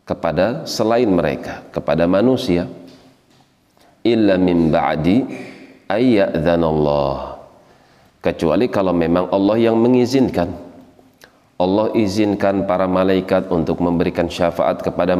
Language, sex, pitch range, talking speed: Indonesian, male, 80-95 Hz, 90 wpm